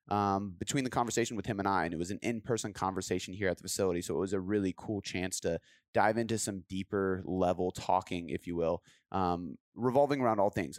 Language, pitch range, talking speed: English, 95-115 Hz, 220 wpm